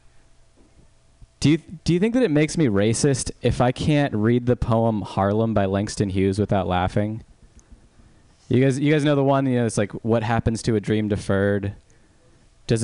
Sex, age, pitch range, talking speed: male, 20-39, 100-120 Hz, 185 wpm